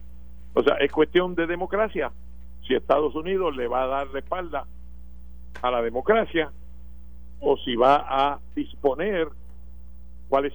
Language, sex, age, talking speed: Spanish, male, 60-79, 135 wpm